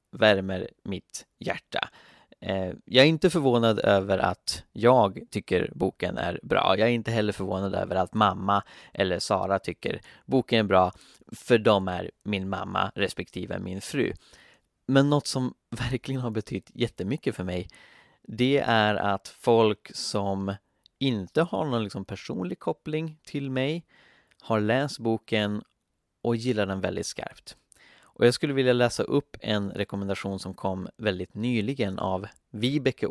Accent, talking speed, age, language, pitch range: native, 145 wpm, 20-39, Swedish, 95-125 Hz